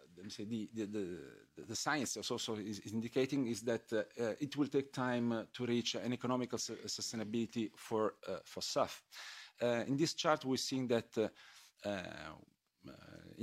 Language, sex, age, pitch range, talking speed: English, male, 40-59, 110-130 Hz, 175 wpm